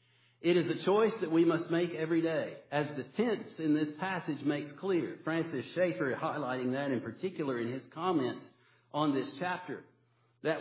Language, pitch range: English, 145-195 Hz